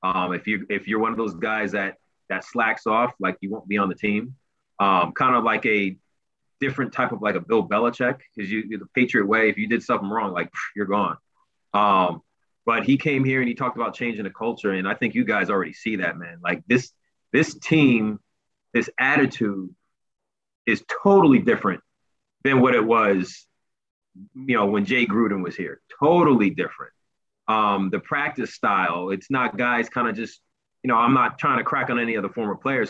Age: 30-49